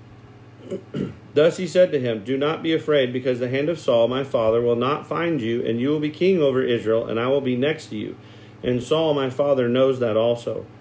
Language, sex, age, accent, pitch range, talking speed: English, male, 40-59, American, 115-150 Hz, 230 wpm